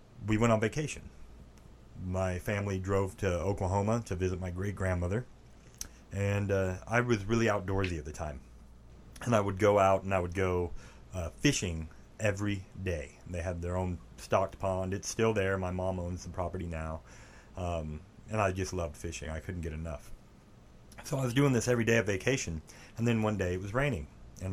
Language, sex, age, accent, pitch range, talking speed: English, male, 30-49, American, 85-105 Hz, 190 wpm